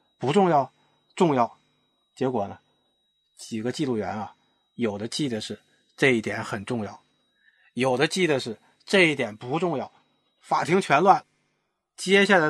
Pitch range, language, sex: 145-190 Hz, Chinese, male